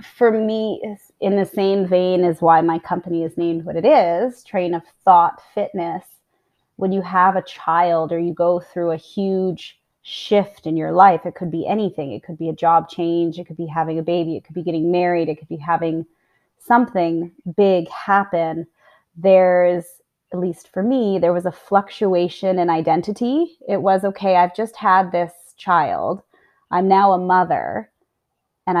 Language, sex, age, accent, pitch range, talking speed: English, female, 20-39, American, 170-195 Hz, 180 wpm